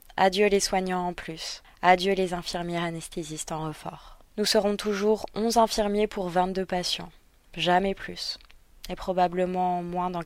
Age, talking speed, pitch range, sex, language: 20-39, 145 wpm, 170-200 Hz, female, French